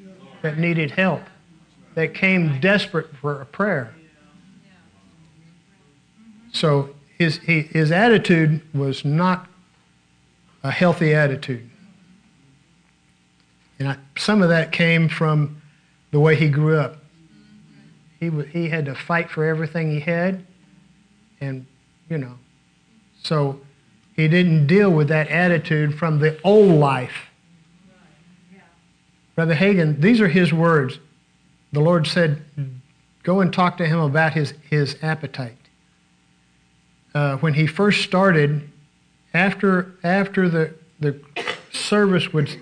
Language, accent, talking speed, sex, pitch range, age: English, American, 115 wpm, male, 145-180 Hz, 50-69